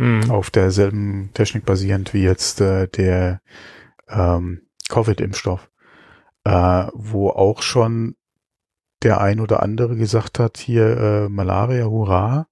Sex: male